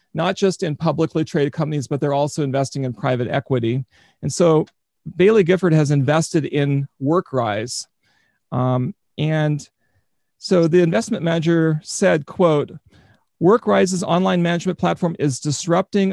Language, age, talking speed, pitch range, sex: English, 40-59, 130 wpm, 145-180 Hz, male